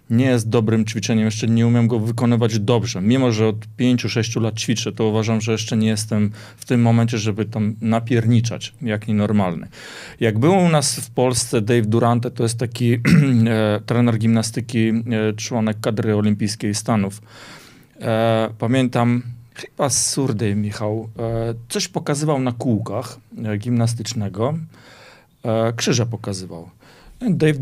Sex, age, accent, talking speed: male, 40-59, native, 130 wpm